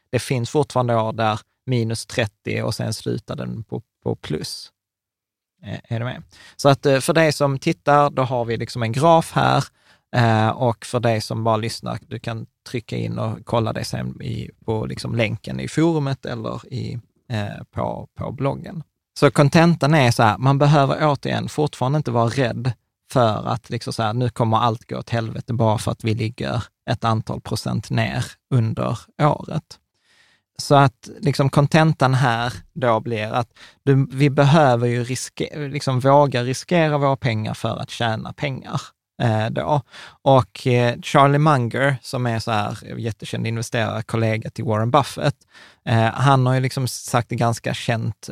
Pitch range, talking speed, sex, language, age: 115-140 Hz, 160 wpm, male, Swedish, 20-39